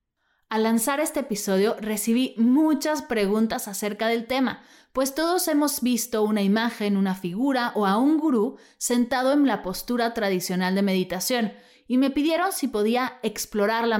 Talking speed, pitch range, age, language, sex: 150 wpm, 210-270 Hz, 30-49, Spanish, female